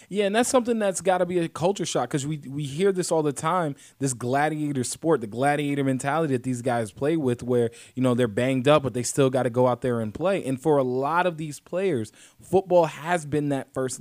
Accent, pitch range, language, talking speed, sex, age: American, 125-155 Hz, English, 250 wpm, male, 20-39